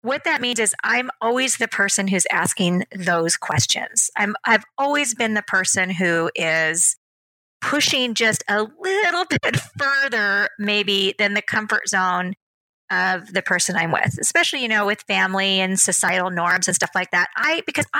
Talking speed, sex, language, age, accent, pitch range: 165 wpm, female, English, 30-49, American, 185-230 Hz